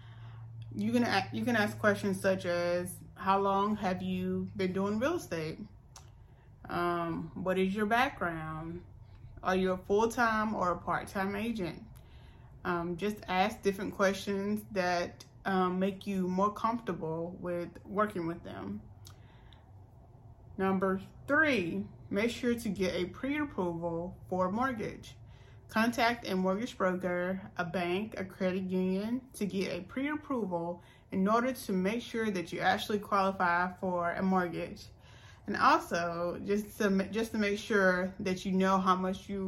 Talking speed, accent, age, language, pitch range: 140 wpm, American, 30-49, English, 175-210 Hz